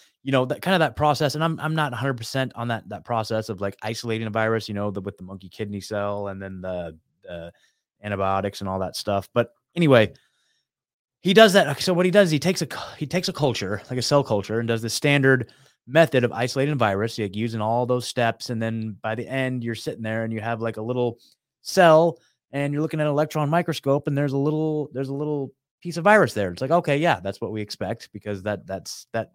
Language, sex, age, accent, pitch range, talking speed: English, male, 20-39, American, 110-155 Hz, 240 wpm